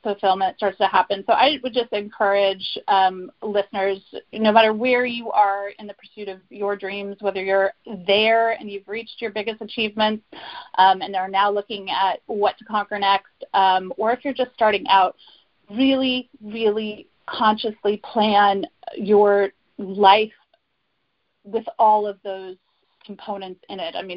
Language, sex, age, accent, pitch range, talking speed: English, female, 30-49, American, 200-245 Hz, 155 wpm